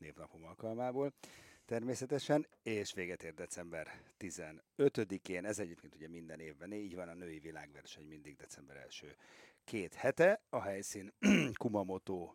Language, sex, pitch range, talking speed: Hungarian, male, 85-115 Hz, 125 wpm